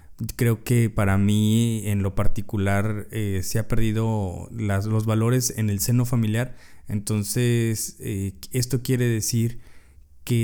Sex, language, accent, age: male, Spanish, Mexican, 20-39